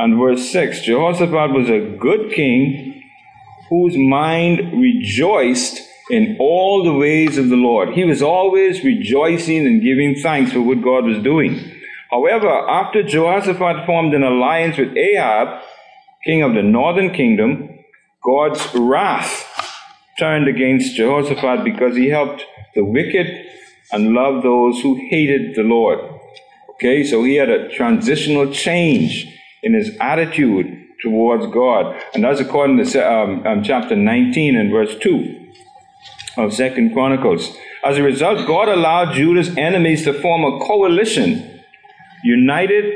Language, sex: English, male